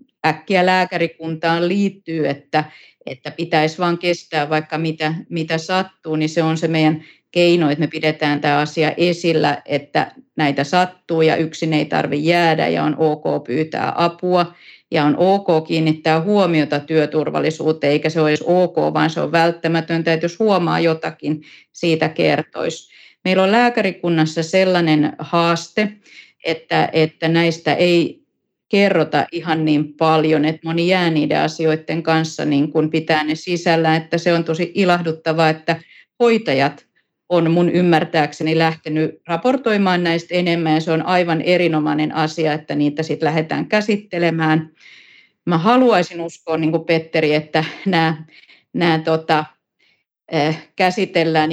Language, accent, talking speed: Finnish, native, 135 wpm